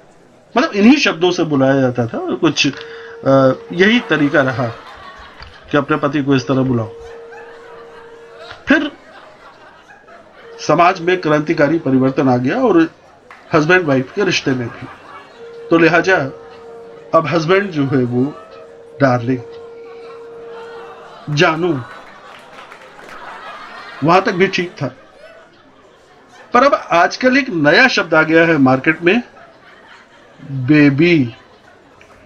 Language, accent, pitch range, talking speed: Hindi, native, 135-220 Hz, 110 wpm